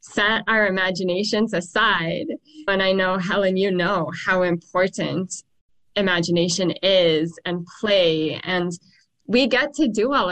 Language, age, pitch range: English, 10-29, 170-195 Hz